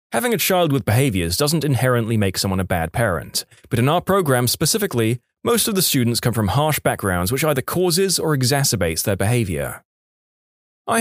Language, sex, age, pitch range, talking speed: English, male, 20-39, 110-160 Hz, 180 wpm